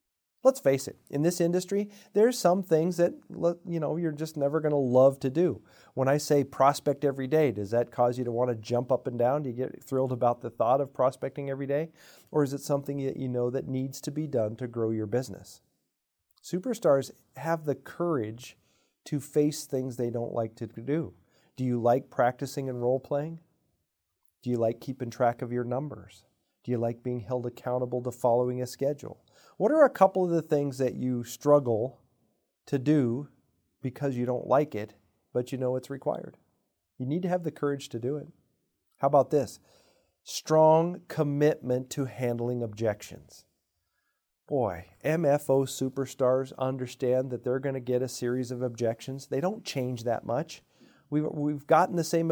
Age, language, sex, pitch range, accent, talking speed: 40-59, English, male, 125-155 Hz, American, 185 wpm